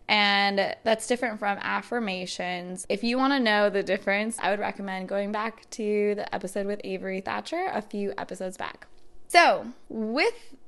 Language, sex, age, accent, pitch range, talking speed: English, female, 20-39, American, 200-260 Hz, 165 wpm